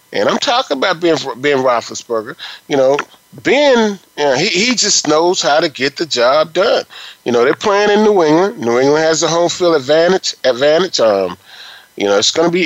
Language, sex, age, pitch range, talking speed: English, male, 30-49, 105-165 Hz, 210 wpm